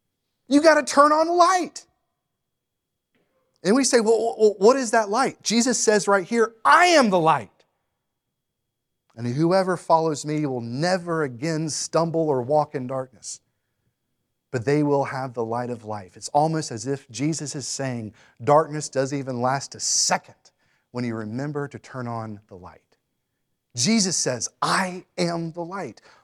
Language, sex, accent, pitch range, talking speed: English, male, American, 125-180 Hz, 160 wpm